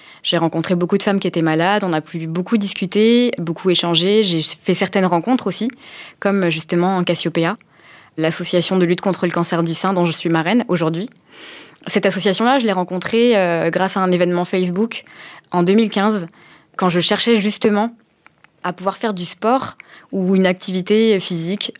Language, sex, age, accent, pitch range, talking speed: French, female, 20-39, French, 170-195 Hz, 170 wpm